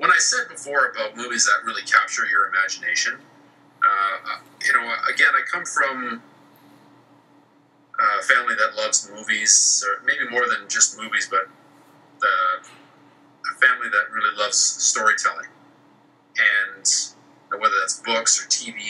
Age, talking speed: 40-59, 145 wpm